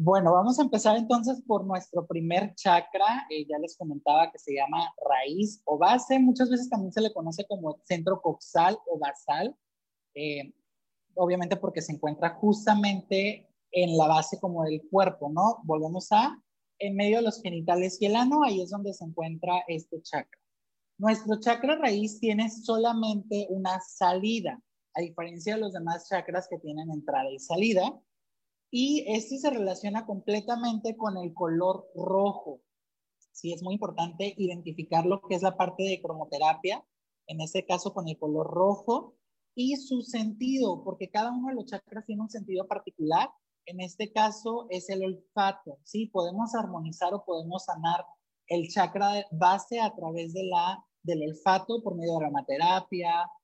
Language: Spanish